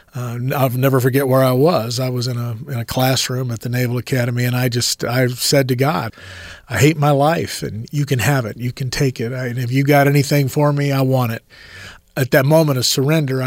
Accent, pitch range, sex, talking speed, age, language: American, 125-145 Hz, male, 230 wpm, 40-59, English